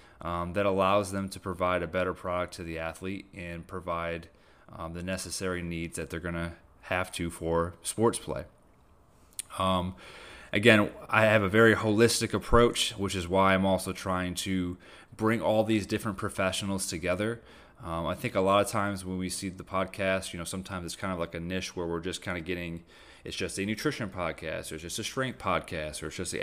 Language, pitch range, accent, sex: English, 85-110 Hz, American, male